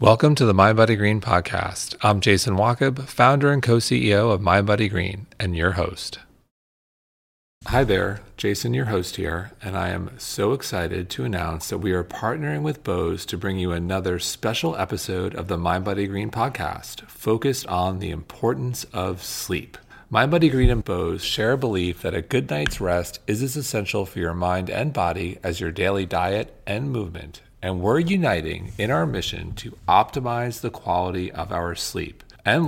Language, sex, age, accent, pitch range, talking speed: English, male, 40-59, American, 90-115 Hz, 180 wpm